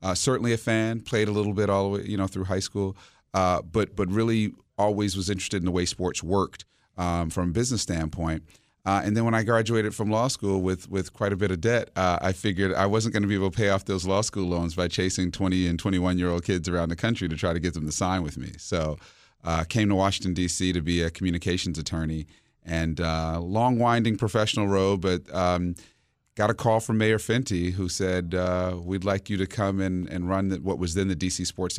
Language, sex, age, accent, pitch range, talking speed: English, male, 40-59, American, 85-105 Hz, 240 wpm